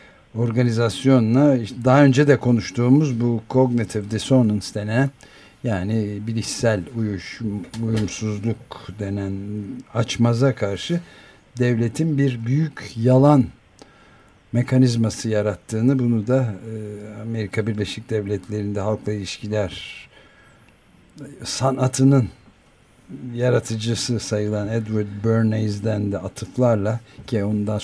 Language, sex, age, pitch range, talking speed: Turkish, male, 60-79, 105-130 Hz, 80 wpm